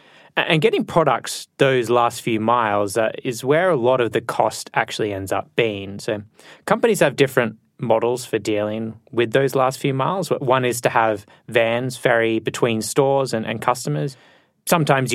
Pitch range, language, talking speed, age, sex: 110-130 Hz, English, 170 wpm, 20-39, male